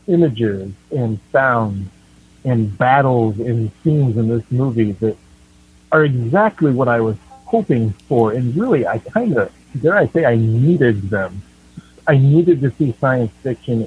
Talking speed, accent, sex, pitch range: 150 wpm, American, male, 110-135 Hz